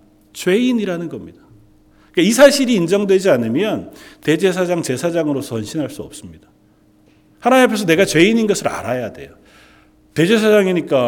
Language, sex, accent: Korean, male, native